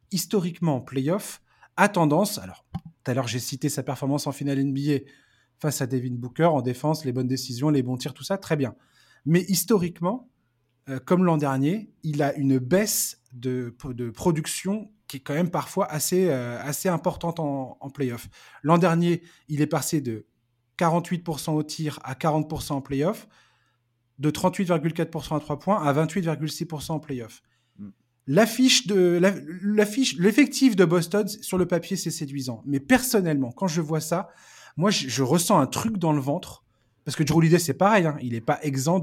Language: French